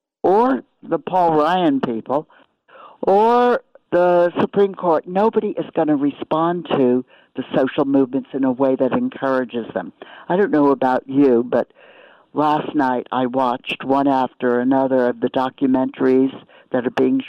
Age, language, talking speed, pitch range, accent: 60-79, English, 150 wpm, 130-175 Hz, American